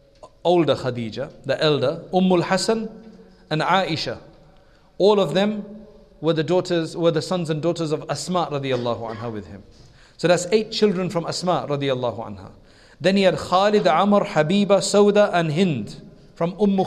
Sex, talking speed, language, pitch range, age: male, 150 wpm, English, 150-185 Hz, 40-59